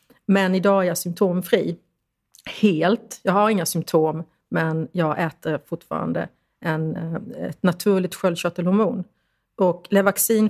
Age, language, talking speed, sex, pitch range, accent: 40-59, English, 115 wpm, female, 165-200 Hz, Swedish